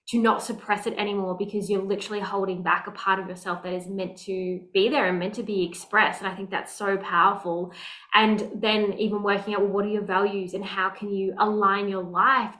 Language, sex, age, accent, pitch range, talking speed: English, female, 20-39, Australian, 190-220 Hz, 225 wpm